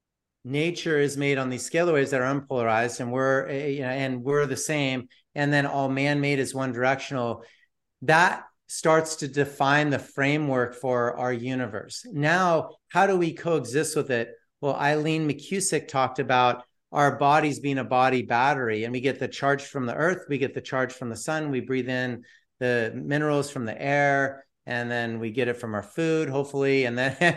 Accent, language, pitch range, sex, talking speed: American, English, 125-145 Hz, male, 190 wpm